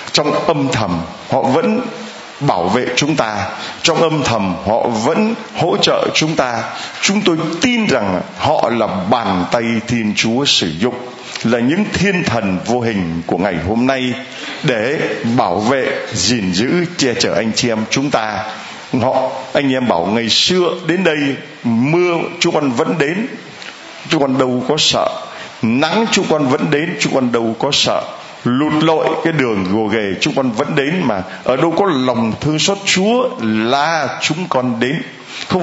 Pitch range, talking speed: 120-185 Hz, 175 wpm